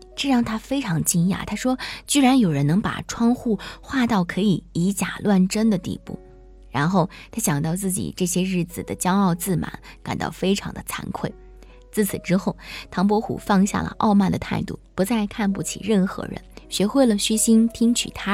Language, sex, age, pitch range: Chinese, female, 20-39, 170-220 Hz